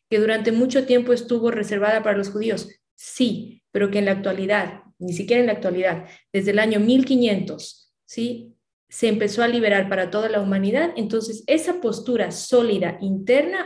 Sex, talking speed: female, 165 wpm